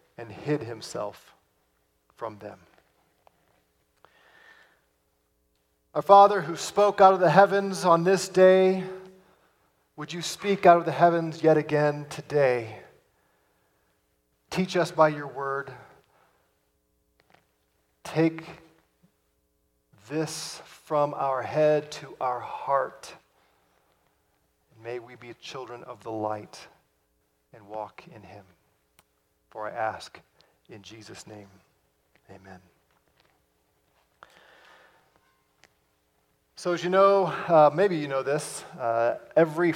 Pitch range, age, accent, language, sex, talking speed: 110-170 Hz, 40-59, American, English, male, 105 wpm